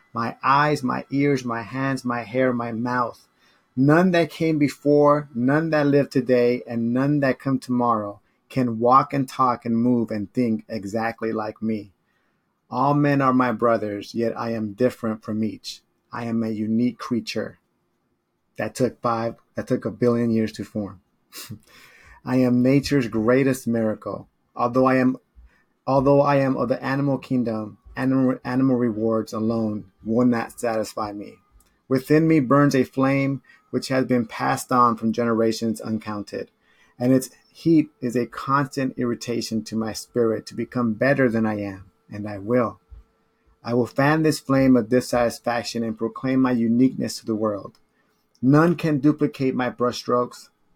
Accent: American